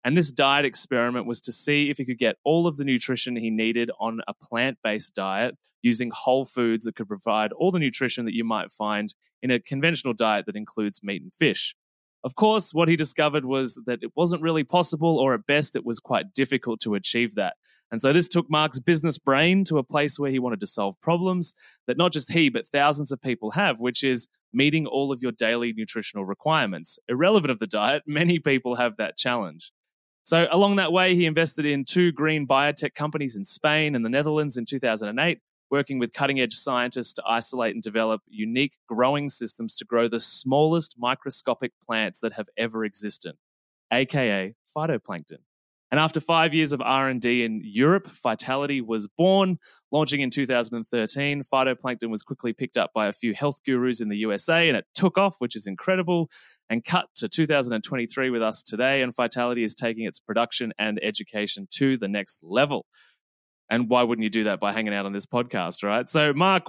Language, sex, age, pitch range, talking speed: English, male, 20-39, 115-155 Hz, 195 wpm